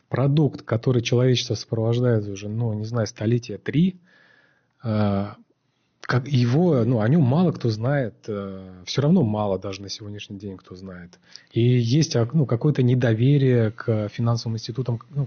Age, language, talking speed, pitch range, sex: 30-49, Russian, 140 wpm, 105-125 Hz, male